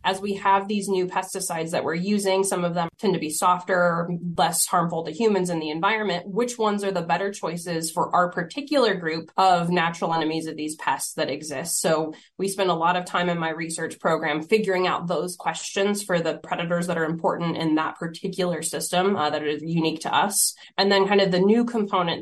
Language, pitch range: English, 165-195 Hz